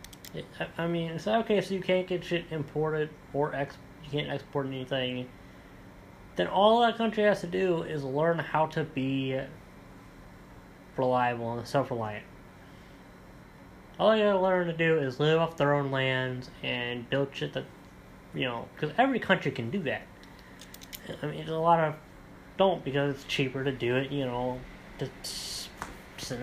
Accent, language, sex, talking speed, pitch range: American, English, male, 160 wpm, 130-155 Hz